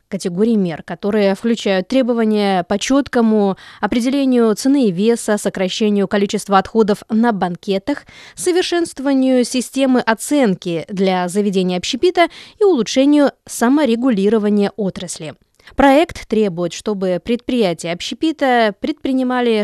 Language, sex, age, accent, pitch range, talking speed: Russian, female, 20-39, native, 195-260 Hz, 100 wpm